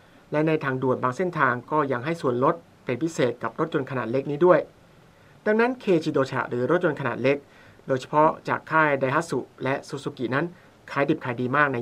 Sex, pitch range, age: male, 130-155 Hz, 60-79